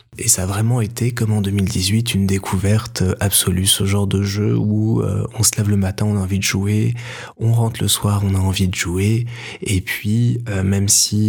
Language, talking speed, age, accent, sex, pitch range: French, 220 wpm, 20-39, French, male, 100-115 Hz